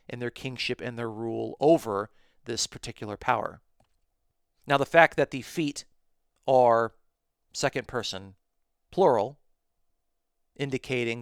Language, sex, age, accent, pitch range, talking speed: English, male, 40-59, American, 105-130 Hz, 110 wpm